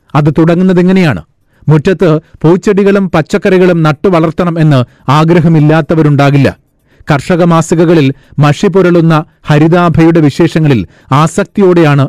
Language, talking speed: Malayalam, 70 wpm